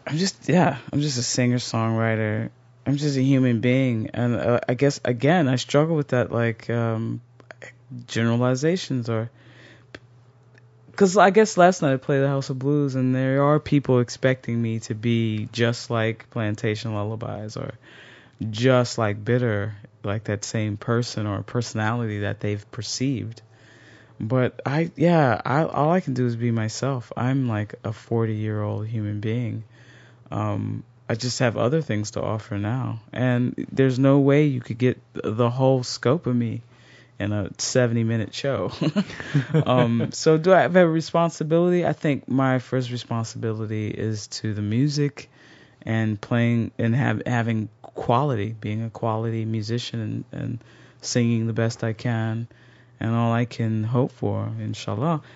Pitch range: 115-135 Hz